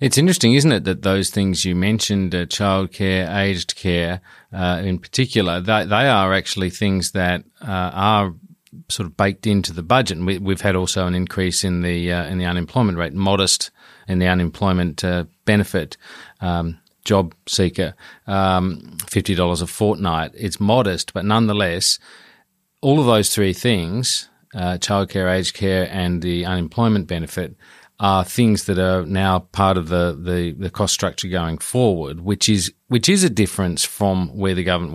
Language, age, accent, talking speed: English, 40-59, Australian, 170 wpm